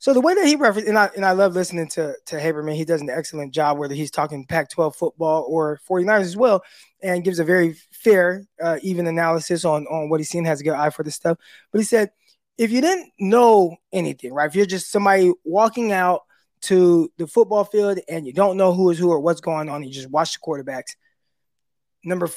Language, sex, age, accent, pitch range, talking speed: English, male, 20-39, American, 160-205 Hz, 230 wpm